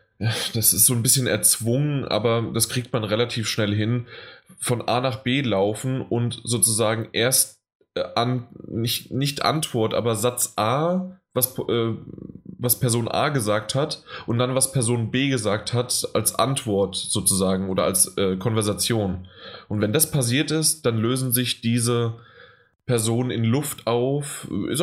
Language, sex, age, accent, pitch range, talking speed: German, male, 10-29, German, 110-125 Hz, 150 wpm